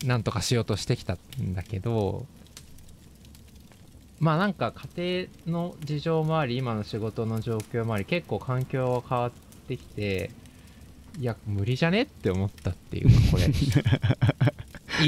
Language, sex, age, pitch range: Japanese, male, 20-39, 95-140 Hz